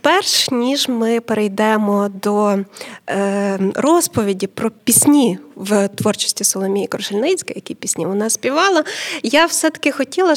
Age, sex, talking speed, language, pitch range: 20-39, female, 115 wpm, Ukrainian, 210-255 Hz